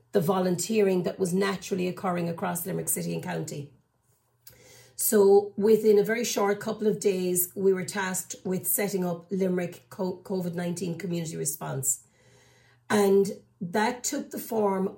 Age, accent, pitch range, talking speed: 40-59, Irish, 180-210 Hz, 135 wpm